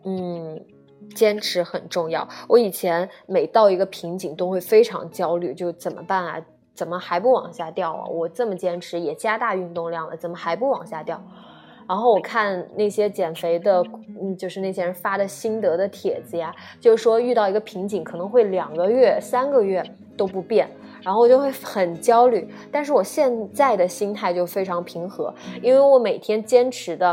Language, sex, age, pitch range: Chinese, female, 20-39, 175-240 Hz